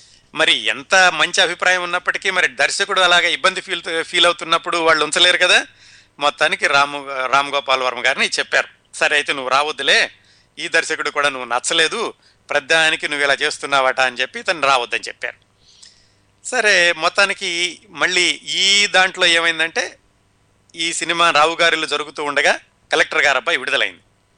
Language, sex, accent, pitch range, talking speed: Telugu, male, native, 130-170 Hz, 130 wpm